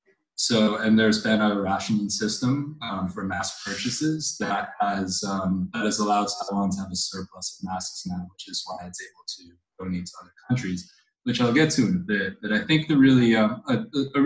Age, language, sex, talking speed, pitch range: 20-39, English, male, 210 wpm, 95-115 Hz